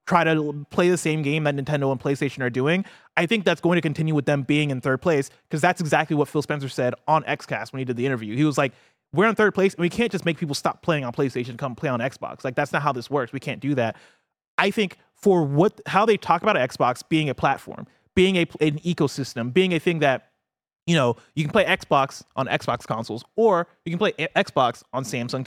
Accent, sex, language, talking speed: American, male, English, 250 wpm